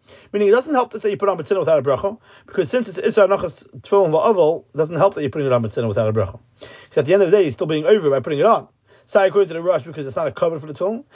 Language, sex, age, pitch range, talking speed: English, male, 40-59, 155-210 Hz, 335 wpm